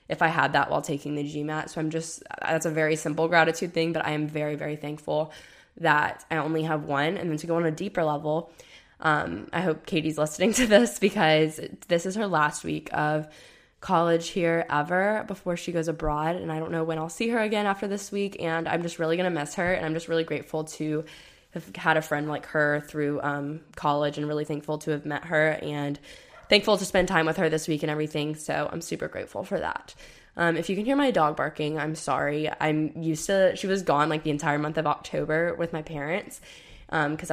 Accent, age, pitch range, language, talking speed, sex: American, 10-29, 155-175 Hz, English, 230 wpm, female